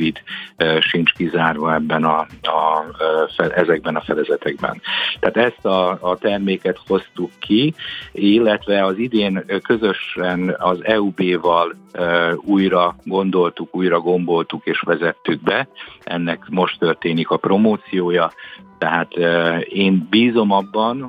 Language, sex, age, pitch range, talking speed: Hungarian, male, 50-69, 85-95 Hz, 115 wpm